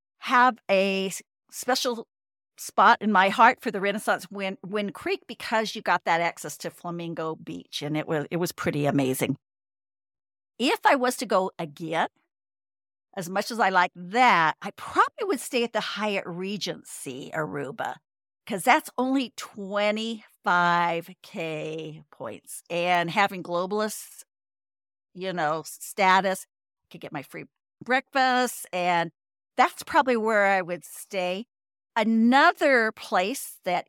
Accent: American